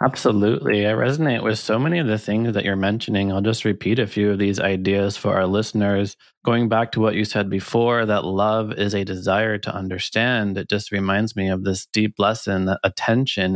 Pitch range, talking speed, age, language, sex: 100-110 Hz, 210 wpm, 20-39, English, male